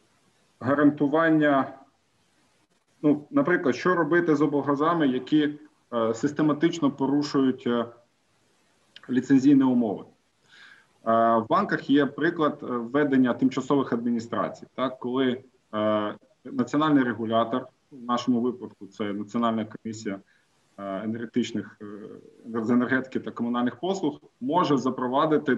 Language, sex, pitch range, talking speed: Ukrainian, male, 115-145 Hz, 85 wpm